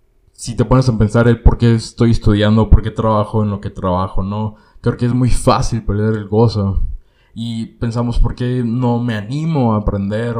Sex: male